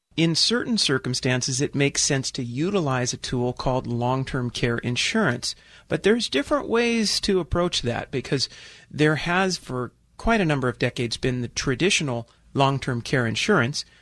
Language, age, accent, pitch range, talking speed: English, 40-59, American, 125-160 Hz, 155 wpm